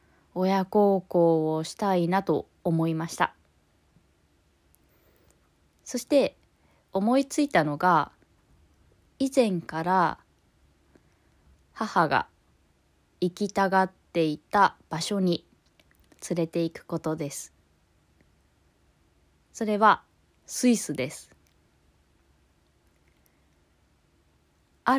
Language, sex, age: Japanese, female, 20-39